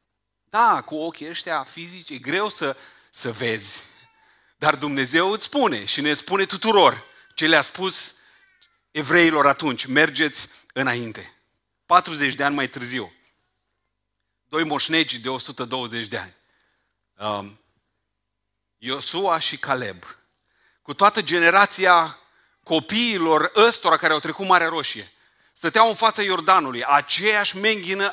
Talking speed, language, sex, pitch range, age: 115 wpm, Romanian, male, 135-195 Hz, 30-49